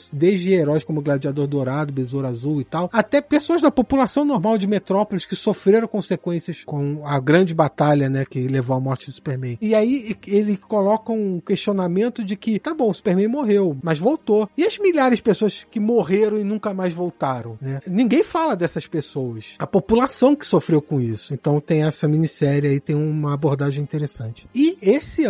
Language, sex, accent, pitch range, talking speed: Portuguese, male, Brazilian, 160-215 Hz, 185 wpm